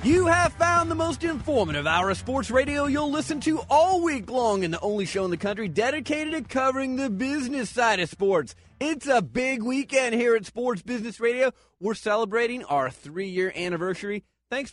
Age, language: 30-49, English